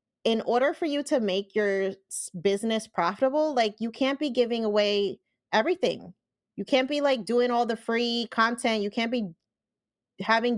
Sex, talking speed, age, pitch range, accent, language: female, 165 wpm, 20-39, 210-265 Hz, American, English